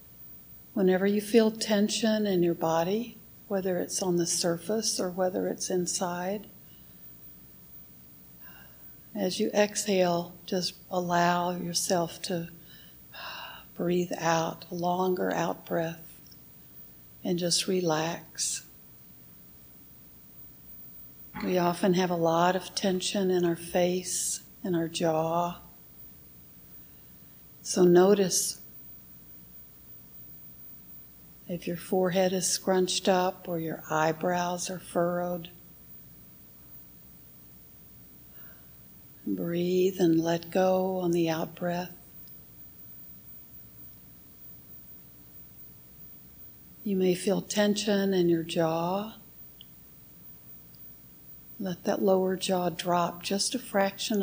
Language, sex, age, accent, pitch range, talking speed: English, female, 60-79, American, 165-190 Hz, 85 wpm